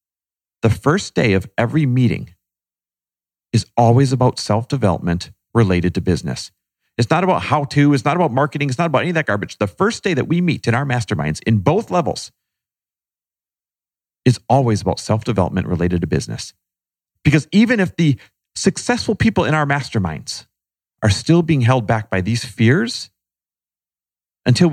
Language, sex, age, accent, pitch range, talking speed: English, male, 40-59, American, 95-150 Hz, 165 wpm